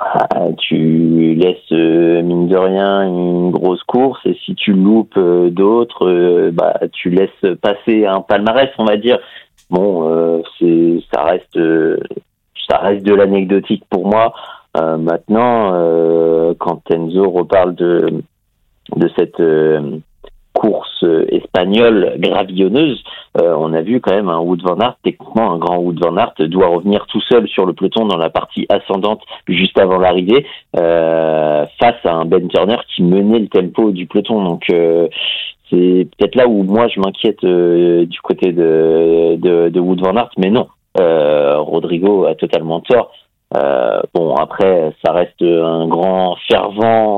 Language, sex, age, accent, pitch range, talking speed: French, male, 50-69, French, 85-105 Hz, 160 wpm